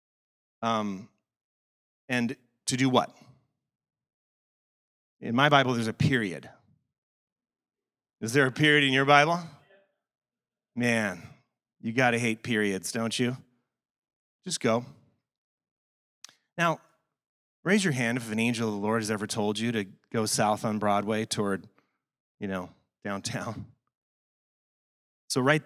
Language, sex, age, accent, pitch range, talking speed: English, male, 30-49, American, 105-135 Hz, 125 wpm